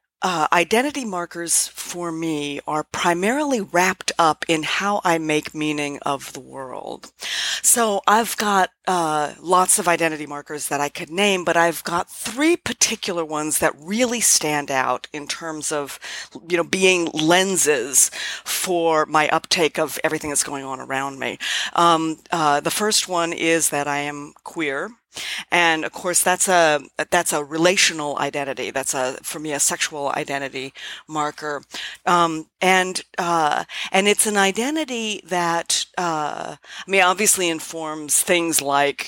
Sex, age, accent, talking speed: female, 40-59, American, 150 wpm